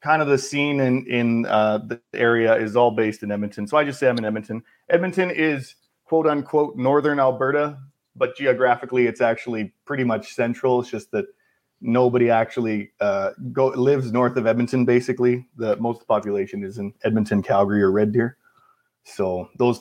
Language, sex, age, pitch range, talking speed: English, male, 30-49, 115-145 Hz, 175 wpm